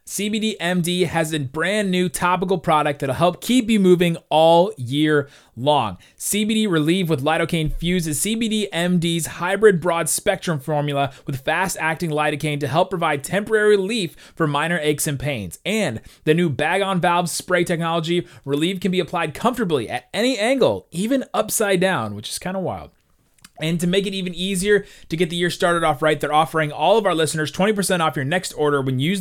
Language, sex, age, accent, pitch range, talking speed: English, male, 30-49, American, 145-185 Hz, 190 wpm